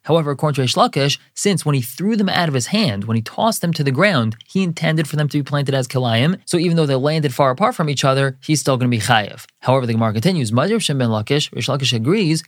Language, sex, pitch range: English, male, 130-165 Hz